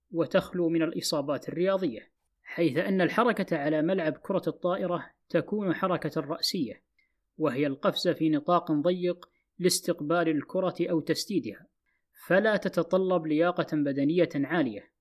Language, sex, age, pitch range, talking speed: Arabic, female, 20-39, 155-180 Hz, 110 wpm